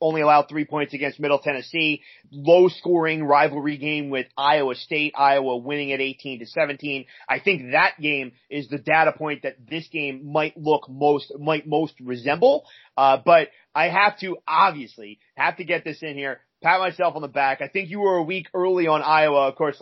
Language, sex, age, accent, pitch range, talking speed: English, male, 30-49, American, 140-170 Hz, 195 wpm